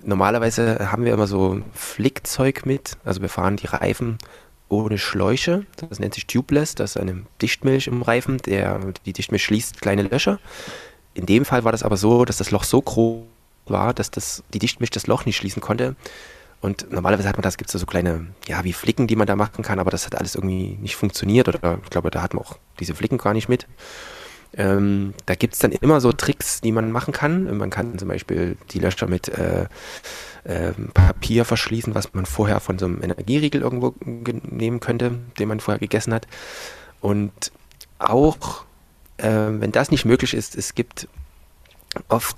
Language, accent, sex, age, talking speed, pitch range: German, German, male, 20-39, 195 wpm, 95-115 Hz